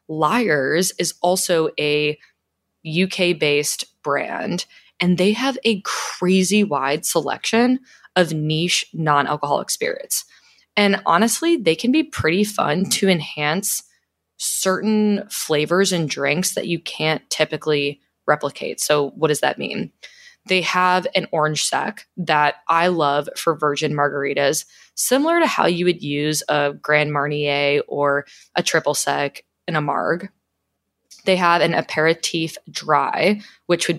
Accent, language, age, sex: American, English, 20-39, female